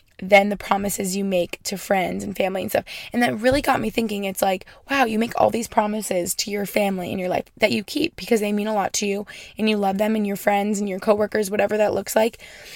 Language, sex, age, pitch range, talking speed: English, female, 20-39, 200-225 Hz, 260 wpm